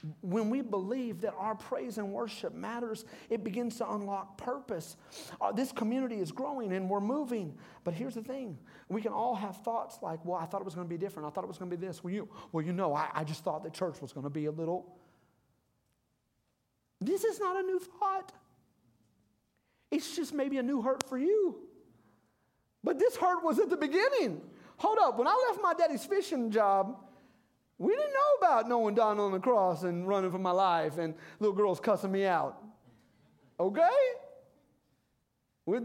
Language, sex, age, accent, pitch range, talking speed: English, male, 40-59, American, 190-275 Hz, 200 wpm